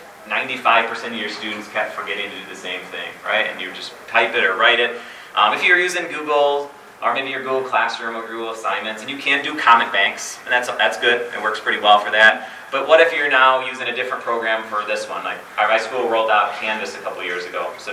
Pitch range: 110-135 Hz